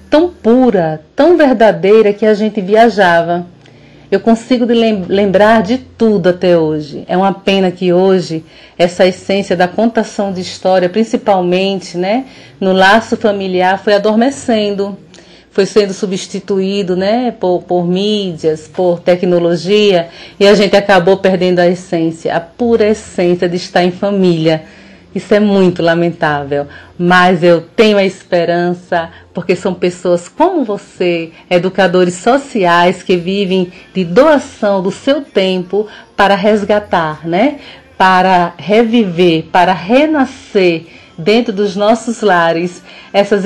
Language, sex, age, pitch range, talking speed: Portuguese, female, 40-59, 180-220 Hz, 125 wpm